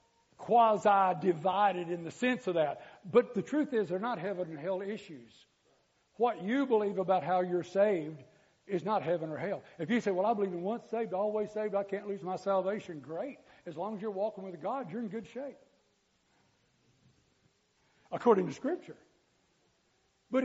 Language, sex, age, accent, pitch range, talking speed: English, male, 60-79, American, 155-205 Hz, 175 wpm